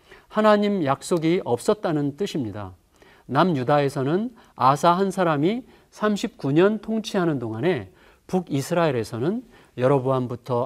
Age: 40-59